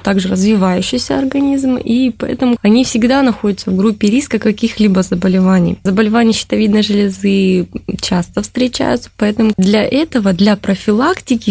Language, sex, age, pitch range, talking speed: Russian, female, 20-39, 195-235 Hz, 120 wpm